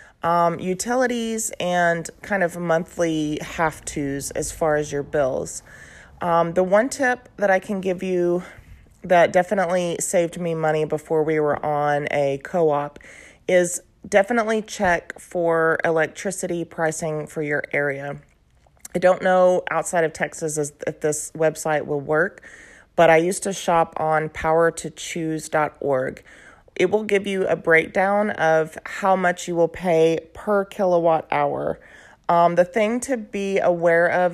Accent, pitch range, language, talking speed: American, 155-180 Hz, English, 140 wpm